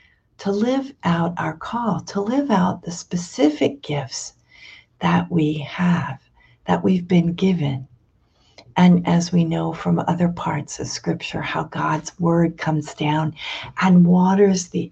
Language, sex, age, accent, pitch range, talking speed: English, female, 50-69, American, 140-185 Hz, 140 wpm